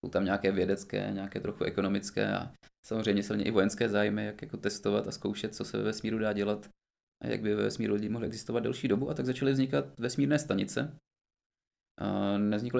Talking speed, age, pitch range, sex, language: 190 wpm, 20-39, 100-120 Hz, male, Czech